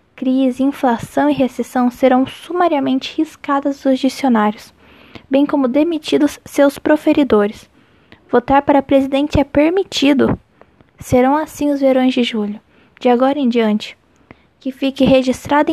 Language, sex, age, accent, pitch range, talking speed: Portuguese, female, 10-29, Brazilian, 235-280 Hz, 120 wpm